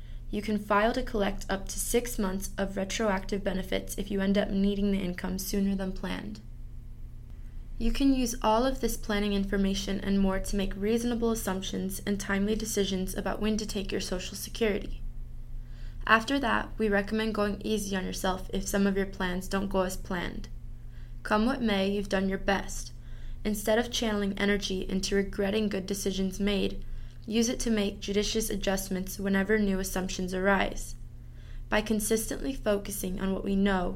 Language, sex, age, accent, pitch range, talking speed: English, female, 20-39, American, 190-210 Hz, 170 wpm